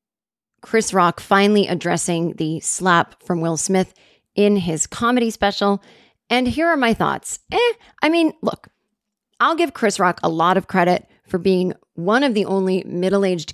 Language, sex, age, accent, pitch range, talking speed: English, female, 30-49, American, 185-230 Hz, 165 wpm